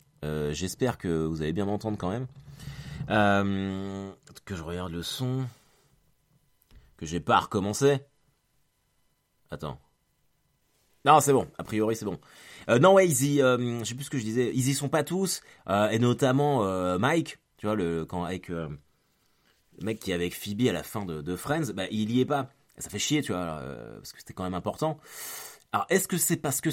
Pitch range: 95-145 Hz